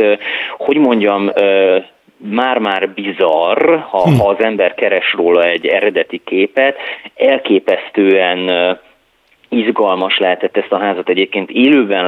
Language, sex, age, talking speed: Hungarian, male, 30-49, 100 wpm